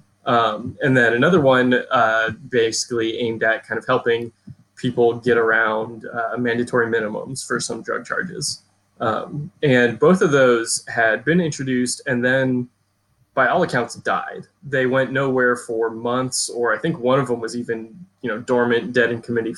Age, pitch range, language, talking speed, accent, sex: 20-39, 115-130 Hz, English, 170 wpm, American, male